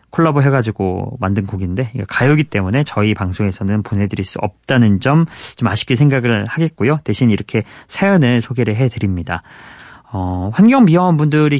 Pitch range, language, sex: 105-145 Hz, Korean, male